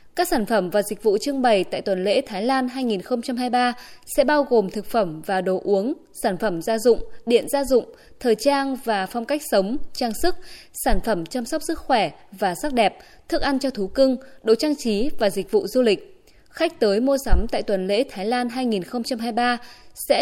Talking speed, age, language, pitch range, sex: 210 wpm, 20-39, Vietnamese, 200-270 Hz, female